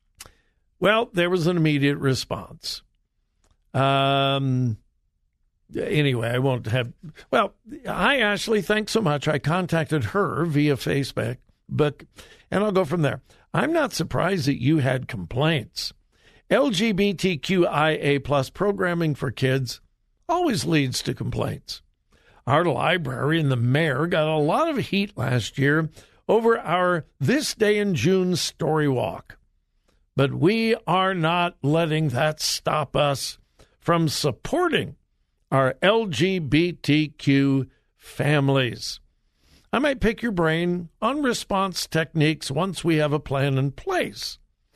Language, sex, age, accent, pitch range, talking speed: English, male, 60-79, American, 135-185 Hz, 120 wpm